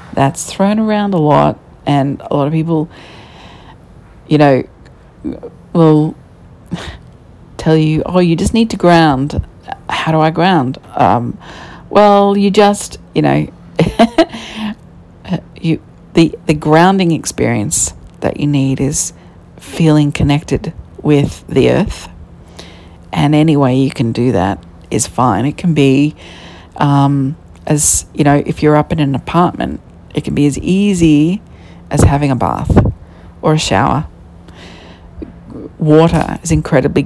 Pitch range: 125-160 Hz